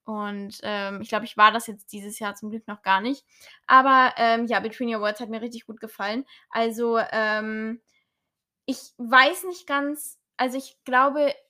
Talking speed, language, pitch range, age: 185 wpm, German, 220-260 Hz, 10-29